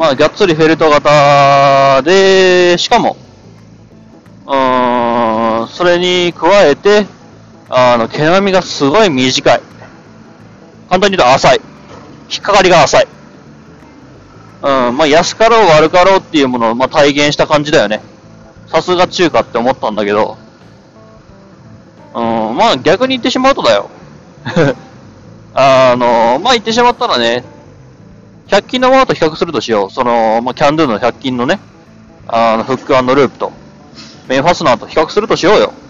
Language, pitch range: Japanese, 115-180 Hz